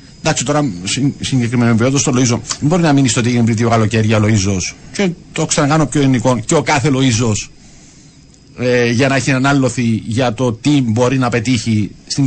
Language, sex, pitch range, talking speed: Greek, male, 120-170 Hz, 195 wpm